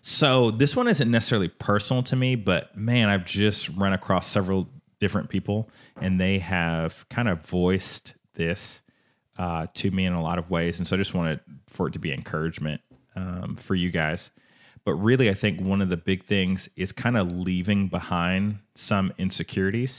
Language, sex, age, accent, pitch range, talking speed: English, male, 30-49, American, 85-100 Hz, 185 wpm